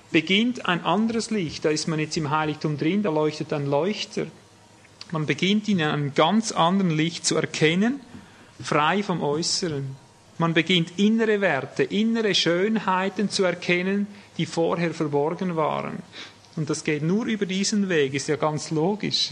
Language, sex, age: German, male, 40-59